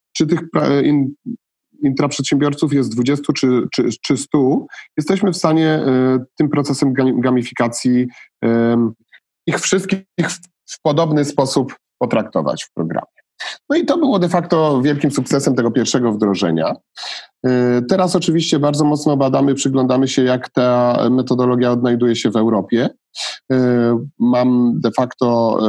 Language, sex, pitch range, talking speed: Polish, male, 115-135 Hz, 115 wpm